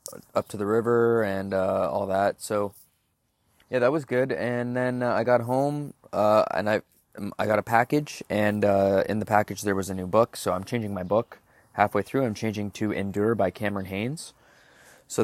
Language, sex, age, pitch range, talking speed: English, male, 20-39, 105-120 Hz, 200 wpm